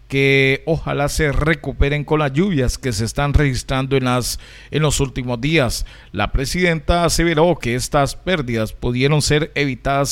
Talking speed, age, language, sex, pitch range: 155 wpm, 40-59, Spanish, male, 125-155 Hz